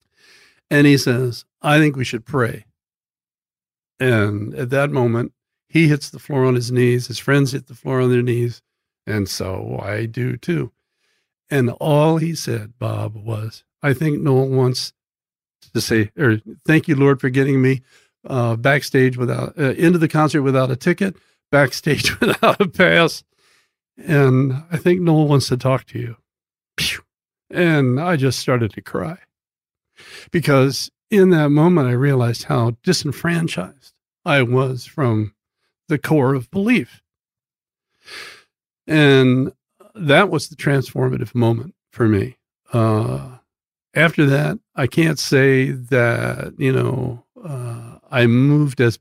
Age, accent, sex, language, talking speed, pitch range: 60-79, American, male, English, 145 wpm, 120-155 Hz